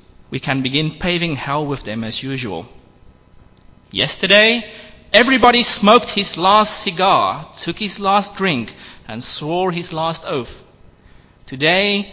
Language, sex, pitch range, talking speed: English, male, 140-200 Hz, 125 wpm